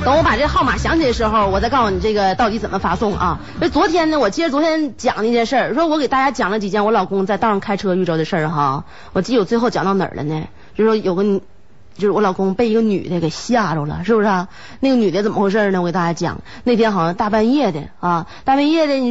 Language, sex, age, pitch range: Chinese, female, 30-49, 190-290 Hz